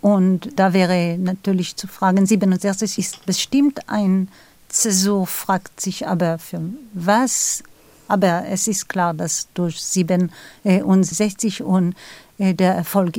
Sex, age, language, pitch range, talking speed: female, 50-69, German, 180-205 Hz, 120 wpm